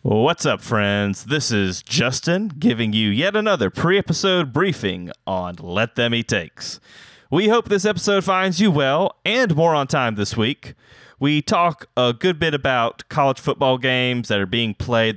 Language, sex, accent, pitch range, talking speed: English, male, American, 115-150 Hz, 170 wpm